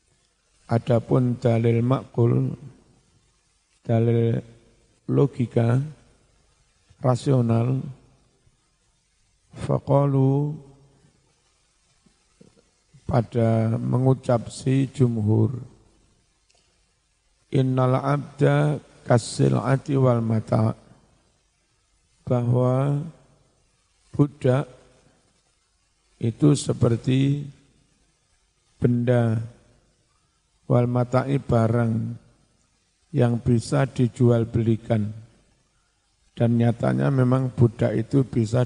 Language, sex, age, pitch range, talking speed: Indonesian, male, 50-69, 115-135 Hz, 50 wpm